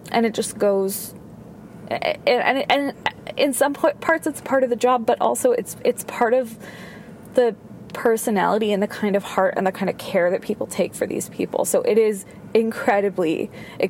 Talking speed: 195 wpm